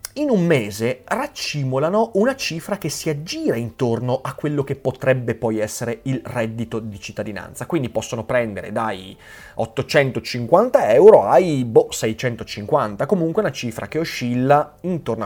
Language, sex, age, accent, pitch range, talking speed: Italian, male, 30-49, native, 110-145 Hz, 140 wpm